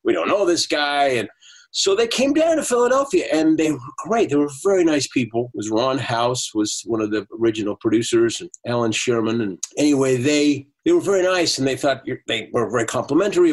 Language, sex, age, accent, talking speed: English, male, 50-69, American, 215 wpm